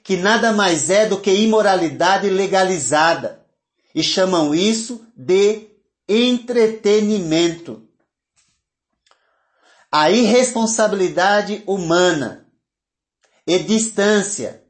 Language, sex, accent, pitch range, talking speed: Portuguese, male, Brazilian, 160-205 Hz, 75 wpm